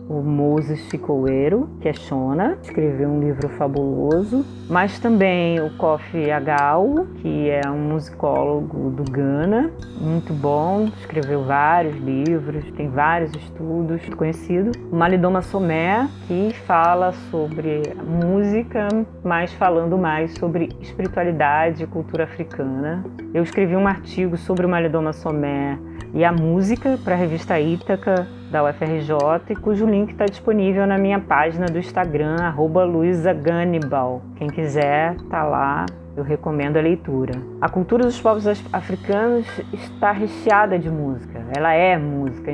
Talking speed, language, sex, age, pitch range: 130 wpm, Portuguese, female, 30-49, 145-185 Hz